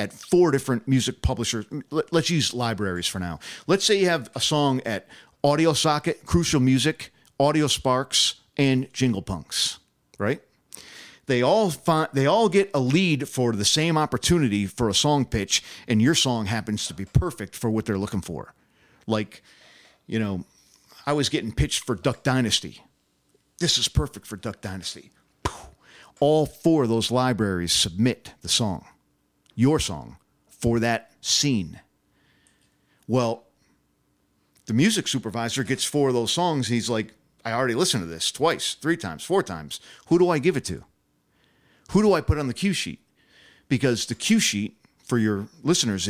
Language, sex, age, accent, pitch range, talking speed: English, male, 50-69, American, 110-150 Hz, 160 wpm